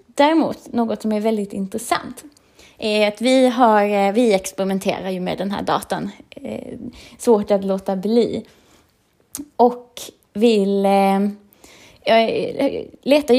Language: Swedish